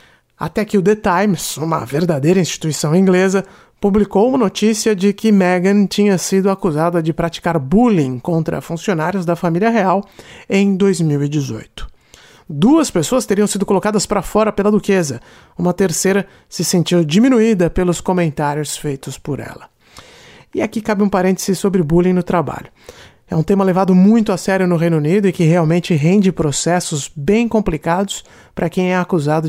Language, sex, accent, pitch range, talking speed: Portuguese, male, Brazilian, 165-205 Hz, 155 wpm